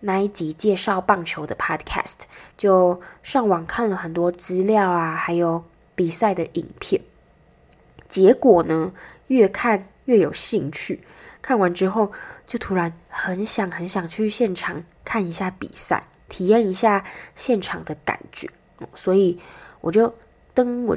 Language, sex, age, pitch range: Chinese, female, 20-39, 180-220 Hz